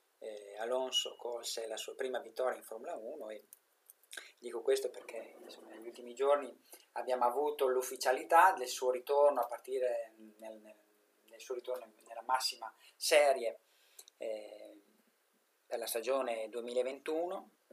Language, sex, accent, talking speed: Italian, male, native, 125 wpm